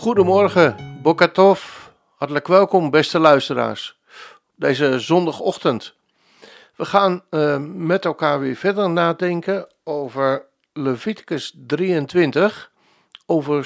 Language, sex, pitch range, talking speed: Dutch, male, 145-195 Hz, 90 wpm